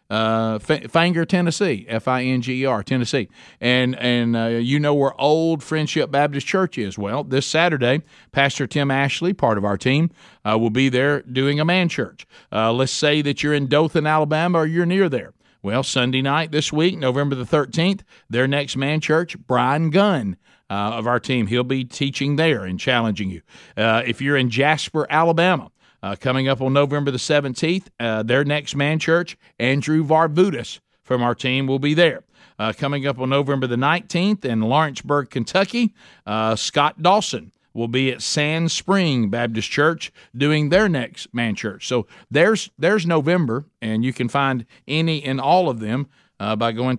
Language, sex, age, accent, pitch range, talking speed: English, male, 50-69, American, 125-160 Hz, 175 wpm